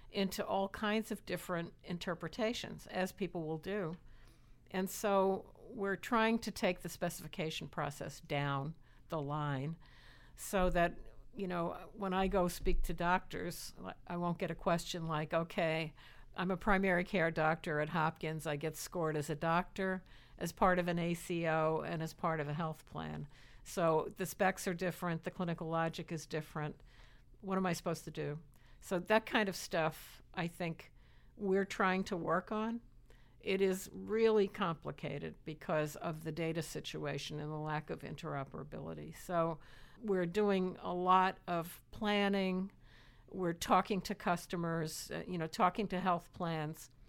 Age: 60-79